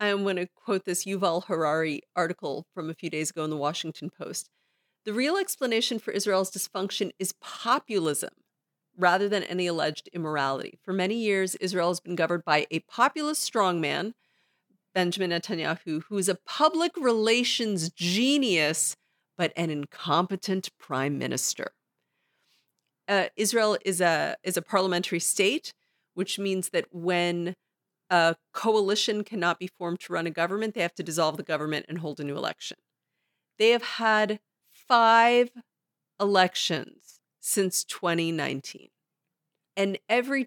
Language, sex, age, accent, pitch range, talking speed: English, female, 40-59, American, 170-215 Hz, 140 wpm